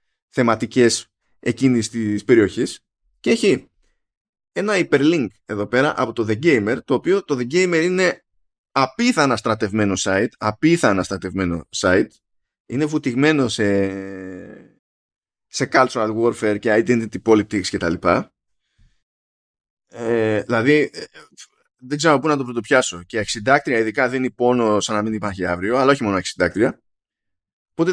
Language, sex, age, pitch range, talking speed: Greek, male, 20-39, 105-150 Hz, 130 wpm